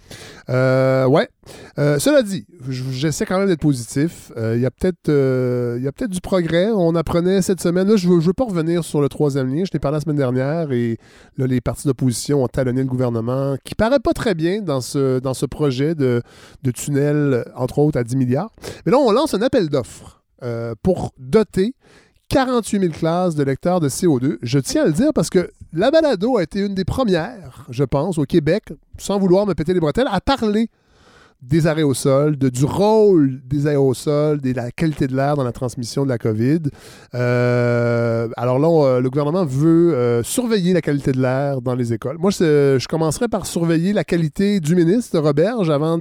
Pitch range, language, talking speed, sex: 130-180 Hz, French, 210 wpm, male